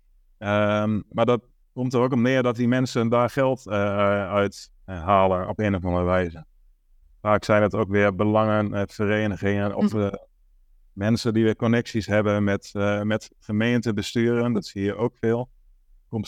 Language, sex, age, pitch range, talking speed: Dutch, male, 30-49, 100-120 Hz, 170 wpm